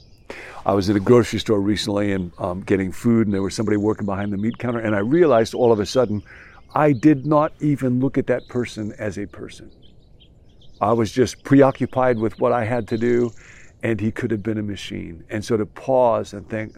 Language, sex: English, male